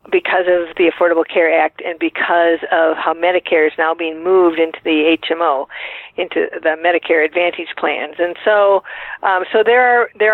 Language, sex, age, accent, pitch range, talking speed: English, female, 50-69, American, 165-200 Hz, 175 wpm